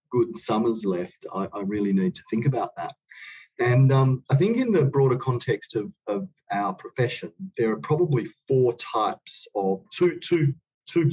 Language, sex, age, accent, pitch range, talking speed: English, male, 40-59, Australian, 110-170 Hz, 175 wpm